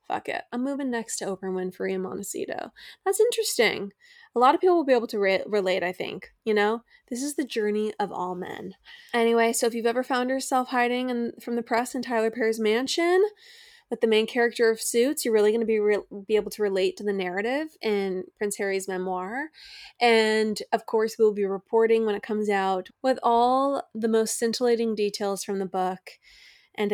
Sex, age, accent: female, 20-39, American